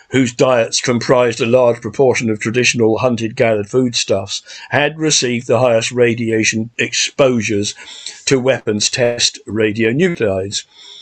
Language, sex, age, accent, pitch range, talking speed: English, male, 50-69, British, 115-145 Hz, 115 wpm